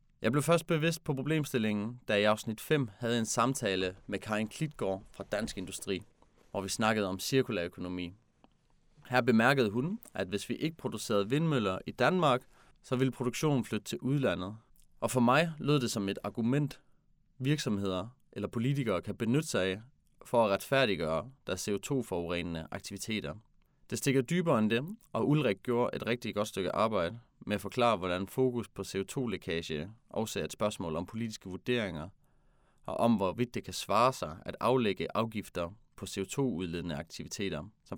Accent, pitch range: native, 95-130 Hz